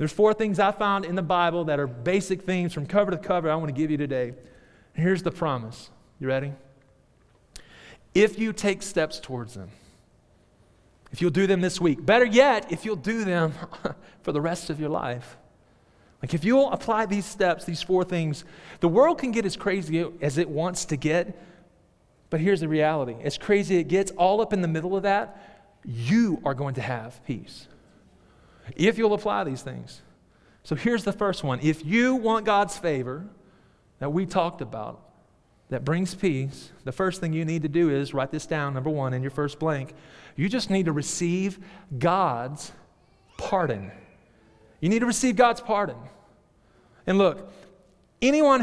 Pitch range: 145-195 Hz